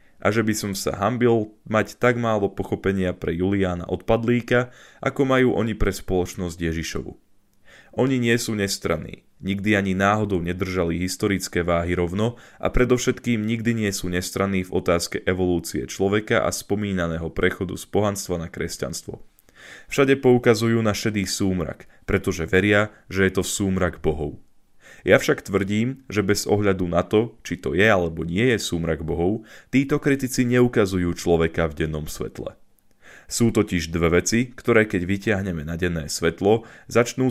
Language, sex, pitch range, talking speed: Slovak, male, 90-110 Hz, 150 wpm